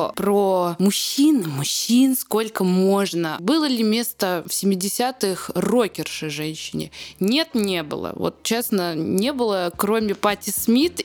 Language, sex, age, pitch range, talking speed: Russian, female, 20-39, 180-215 Hz, 120 wpm